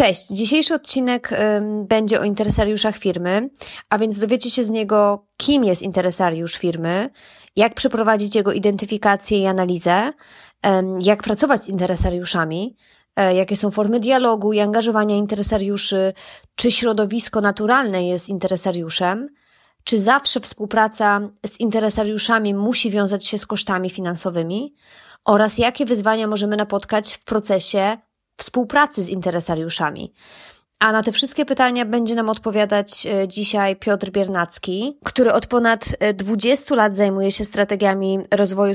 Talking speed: 125 wpm